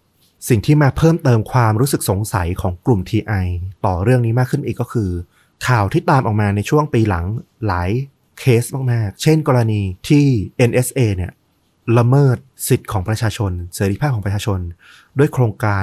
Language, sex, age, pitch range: Thai, male, 30-49, 100-125 Hz